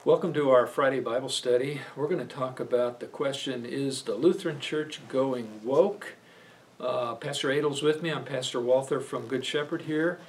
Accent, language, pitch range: American, English, 120-155 Hz